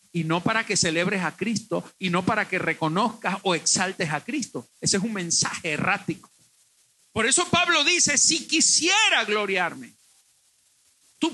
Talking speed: 155 wpm